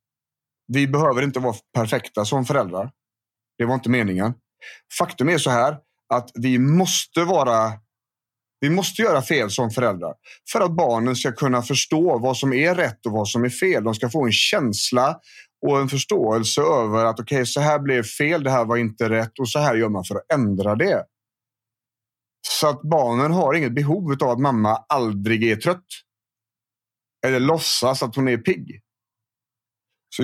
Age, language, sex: 30-49, Swedish, male